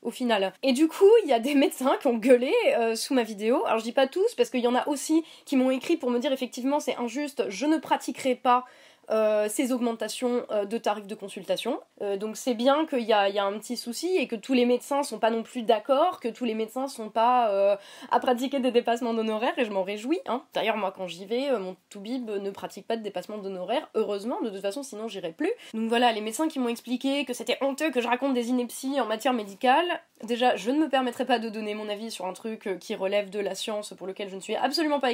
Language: French